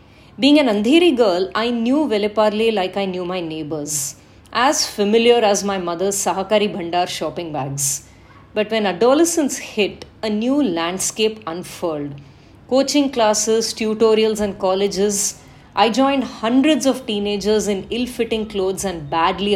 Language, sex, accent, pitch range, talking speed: English, female, Indian, 175-230 Hz, 135 wpm